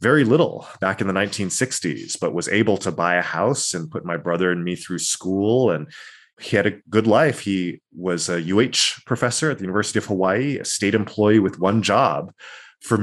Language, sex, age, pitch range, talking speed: English, male, 20-39, 90-120 Hz, 205 wpm